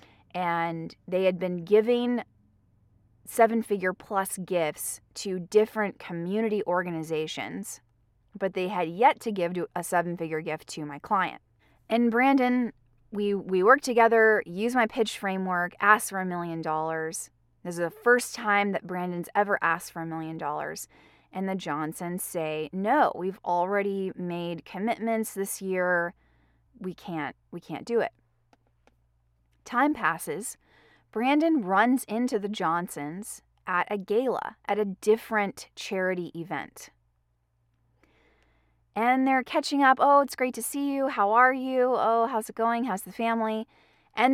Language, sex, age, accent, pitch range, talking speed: English, female, 20-39, American, 160-225 Hz, 140 wpm